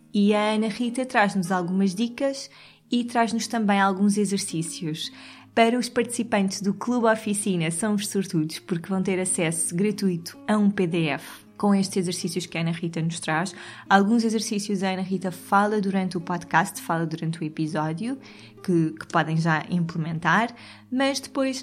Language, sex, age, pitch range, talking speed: Portuguese, female, 20-39, 175-215 Hz, 160 wpm